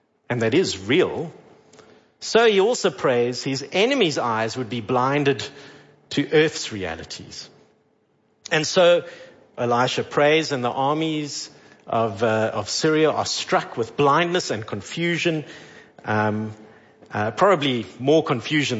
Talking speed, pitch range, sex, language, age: 125 wpm, 120-170 Hz, male, English, 50-69